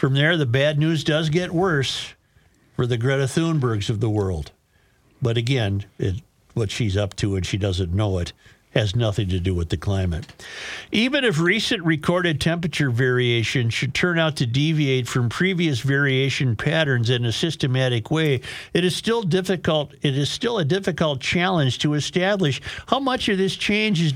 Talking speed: 165 wpm